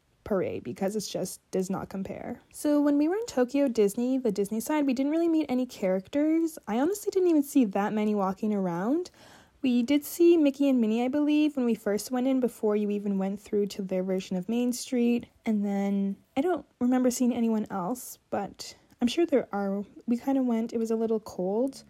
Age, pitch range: 10-29, 205-280 Hz